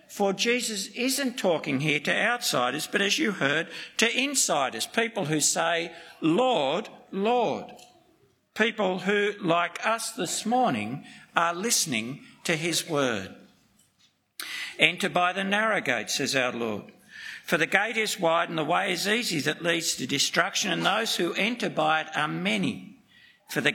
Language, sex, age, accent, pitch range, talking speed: English, male, 60-79, Australian, 170-230 Hz, 155 wpm